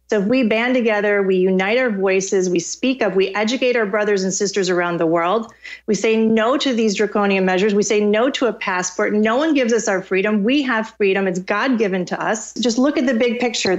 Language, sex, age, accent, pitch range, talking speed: English, female, 30-49, American, 200-245 Hz, 235 wpm